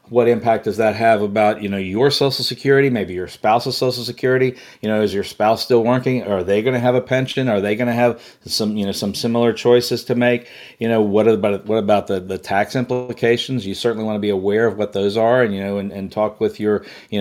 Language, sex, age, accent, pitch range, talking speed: English, male, 40-59, American, 105-120 Hz, 250 wpm